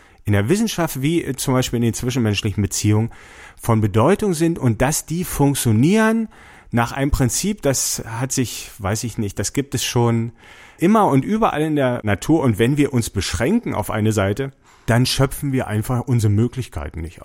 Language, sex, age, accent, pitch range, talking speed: German, male, 40-59, German, 105-145 Hz, 175 wpm